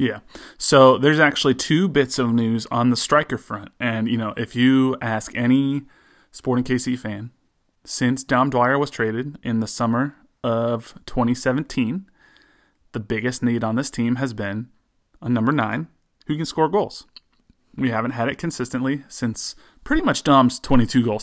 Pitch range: 115-140 Hz